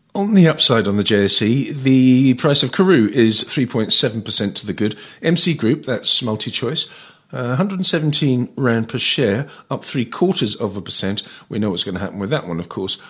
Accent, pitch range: British, 115-145 Hz